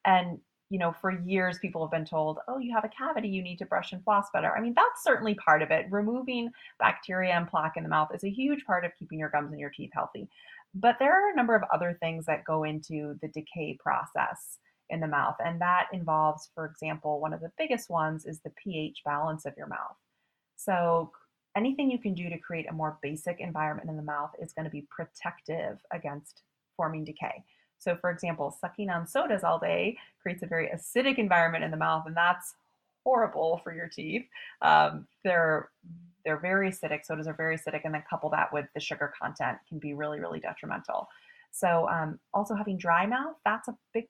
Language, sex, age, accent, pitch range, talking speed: English, female, 30-49, American, 155-200 Hz, 210 wpm